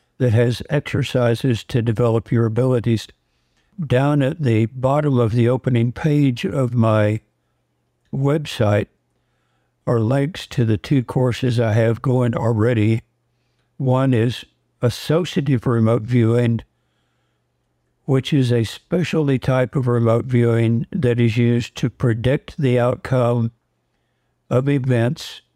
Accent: American